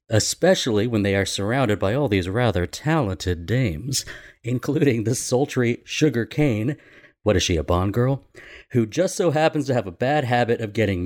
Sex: male